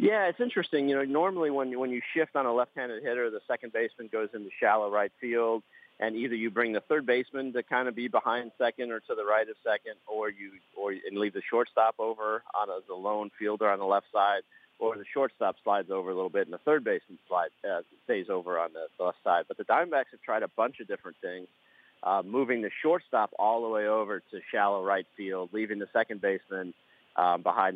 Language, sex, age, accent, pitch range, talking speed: English, male, 40-59, American, 95-125 Hz, 230 wpm